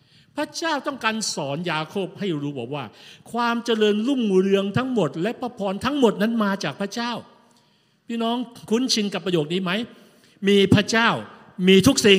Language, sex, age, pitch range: Thai, male, 60-79, 160-220 Hz